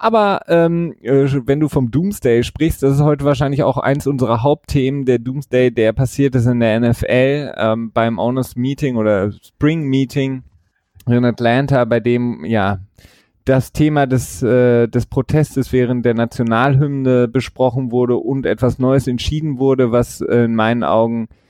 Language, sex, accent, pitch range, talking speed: German, male, German, 110-135 Hz, 155 wpm